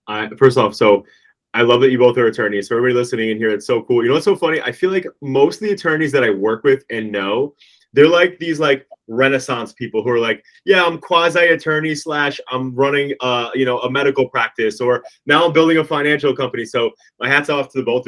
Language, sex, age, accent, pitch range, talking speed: English, male, 20-39, American, 115-145 Hz, 240 wpm